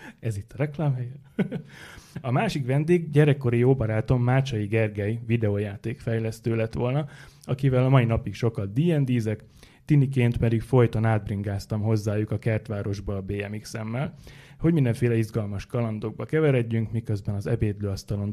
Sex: male